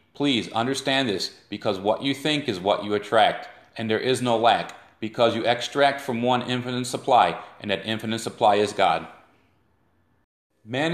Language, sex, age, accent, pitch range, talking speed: English, male, 40-59, American, 100-130 Hz, 165 wpm